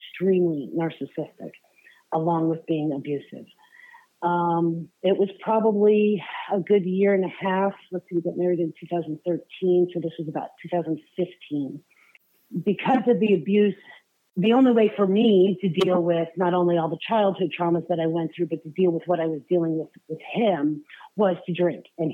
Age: 40-59